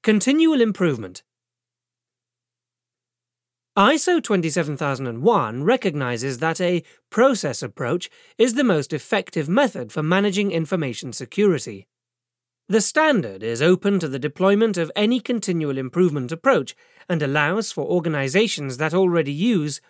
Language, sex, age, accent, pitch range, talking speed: English, male, 40-59, British, 140-220 Hz, 110 wpm